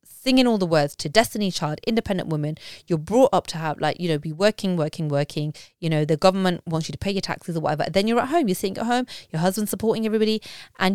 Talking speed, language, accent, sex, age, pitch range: 250 wpm, English, British, female, 30-49, 160-210 Hz